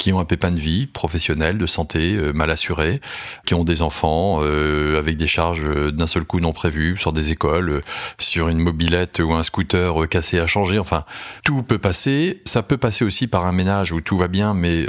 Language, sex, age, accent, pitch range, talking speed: French, male, 30-49, French, 85-105 Hz, 225 wpm